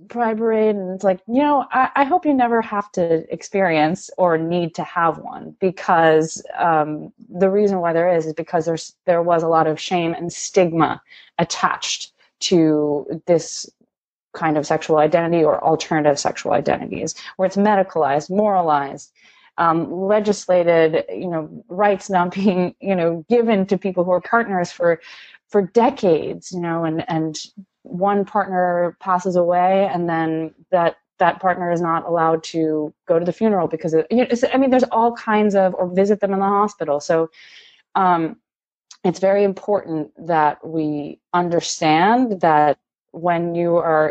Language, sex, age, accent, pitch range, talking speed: English, female, 20-39, American, 160-200 Hz, 160 wpm